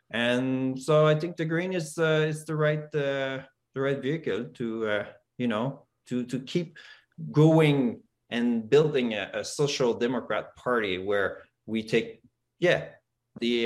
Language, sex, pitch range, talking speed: English, male, 125-160 Hz, 155 wpm